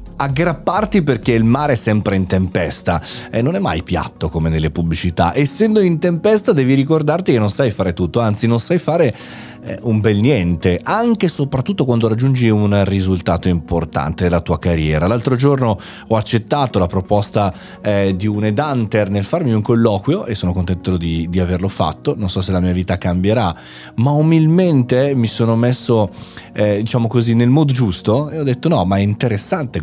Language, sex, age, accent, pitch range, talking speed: Italian, male, 30-49, native, 95-130 Hz, 180 wpm